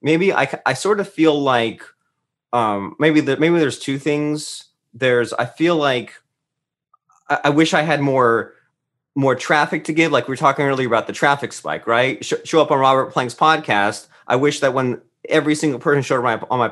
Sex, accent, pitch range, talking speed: male, American, 115-145 Hz, 200 wpm